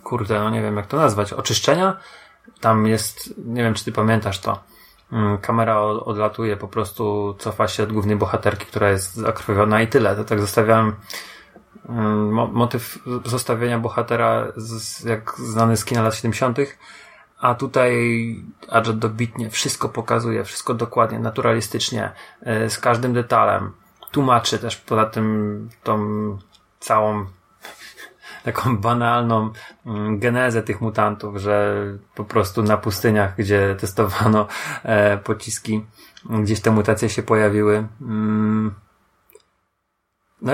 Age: 30-49